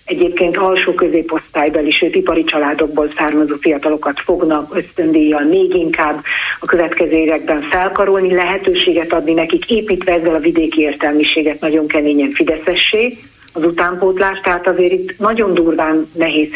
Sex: female